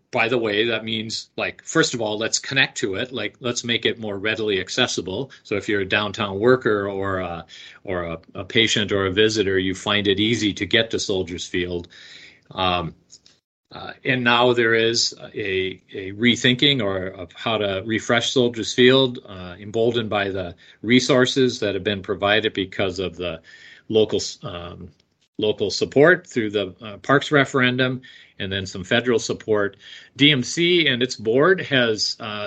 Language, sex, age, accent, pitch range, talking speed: English, male, 40-59, American, 100-125 Hz, 170 wpm